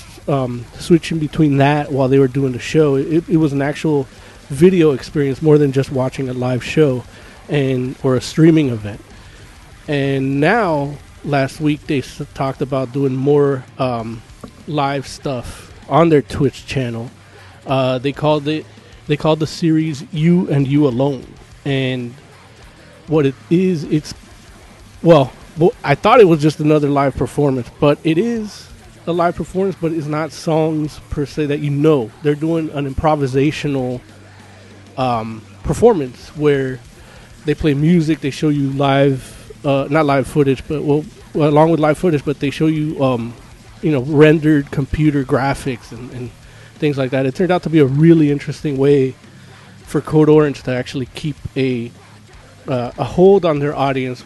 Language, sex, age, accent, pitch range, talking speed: English, male, 30-49, American, 125-155 Hz, 165 wpm